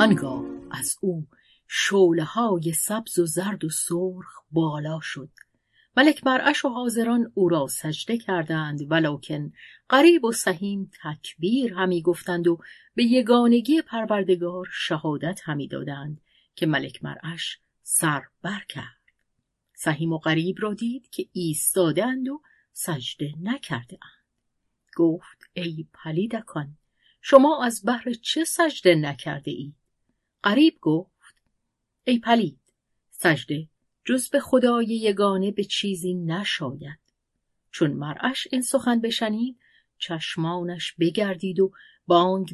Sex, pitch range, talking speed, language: female, 160-225 Hz, 110 wpm, Persian